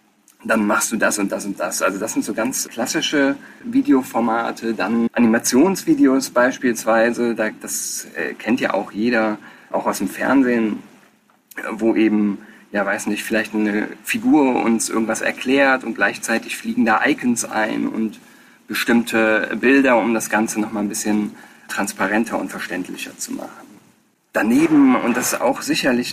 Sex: male